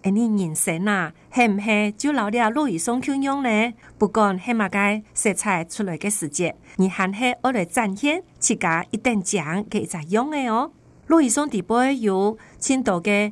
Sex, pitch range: female, 195-245 Hz